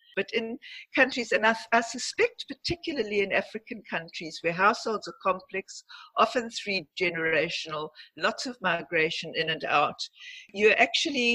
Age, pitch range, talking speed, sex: 60-79, 165-240 Hz, 130 wpm, female